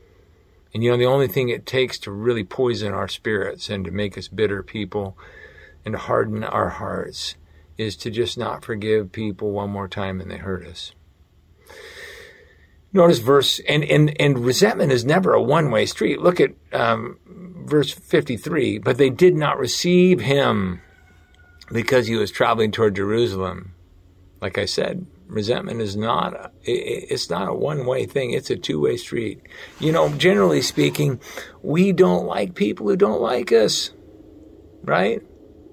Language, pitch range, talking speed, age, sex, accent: English, 95-120 Hz, 160 wpm, 50-69, male, American